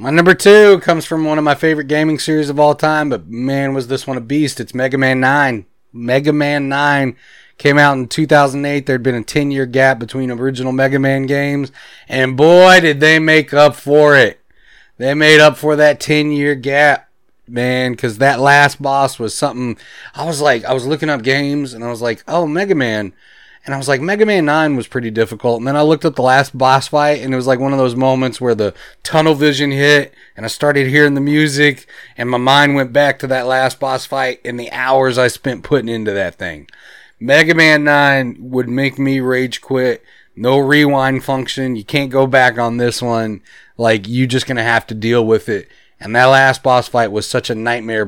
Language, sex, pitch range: English, male, 125-145 Hz